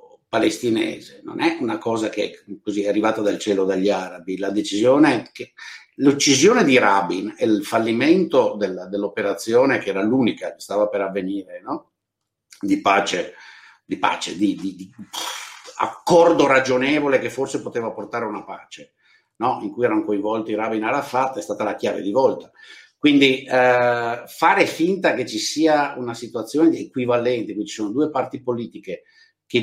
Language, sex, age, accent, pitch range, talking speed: Italian, male, 50-69, native, 105-165 Hz, 165 wpm